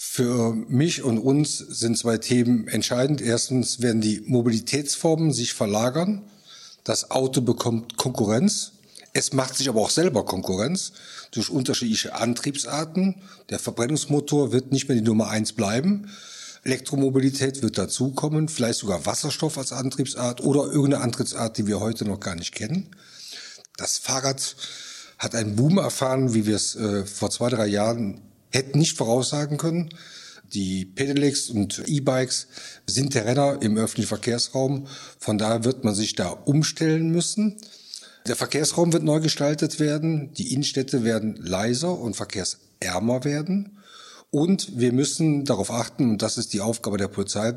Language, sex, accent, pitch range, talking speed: German, male, German, 110-150 Hz, 145 wpm